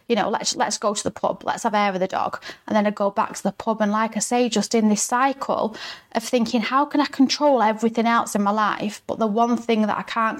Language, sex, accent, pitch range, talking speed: English, female, British, 200-240 Hz, 275 wpm